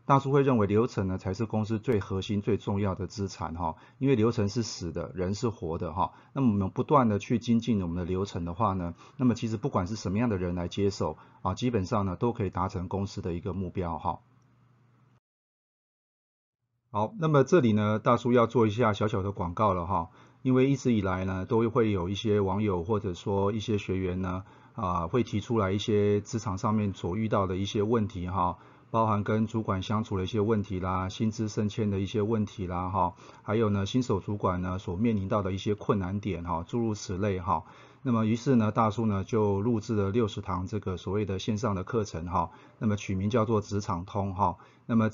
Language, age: Chinese, 30-49